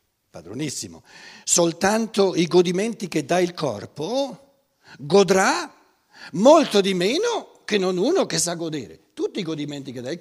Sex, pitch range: male, 140-205 Hz